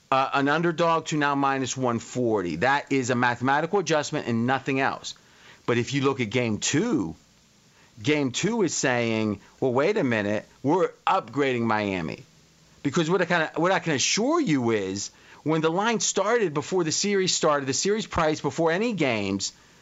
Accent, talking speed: American, 165 wpm